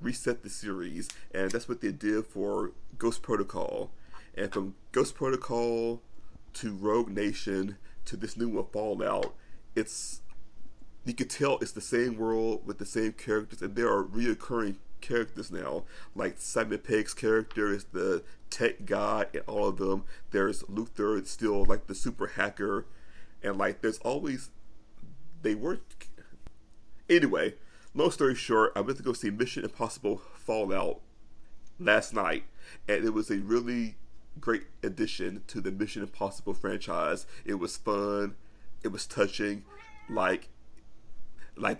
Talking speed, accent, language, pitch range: 145 wpm, American, English, 105-125 Hz